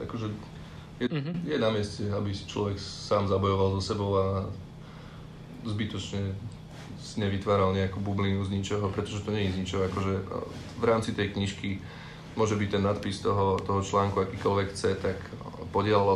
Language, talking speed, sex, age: Slovak, 150 wpm, male, 20-39